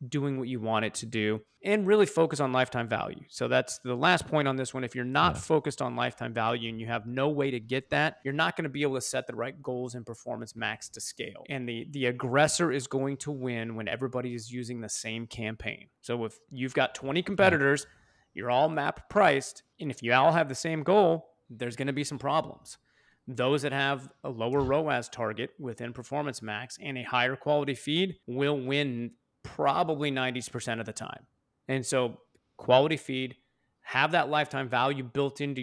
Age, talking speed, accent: 30-49, 210 wpm, American